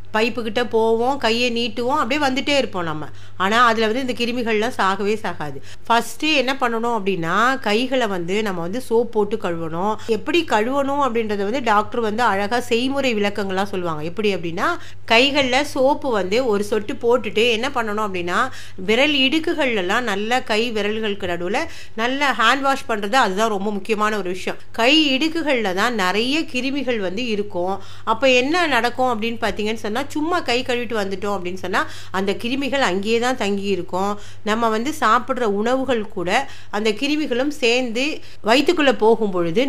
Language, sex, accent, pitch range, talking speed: Tamil, female, native, 195-245 Hz, 110 wpm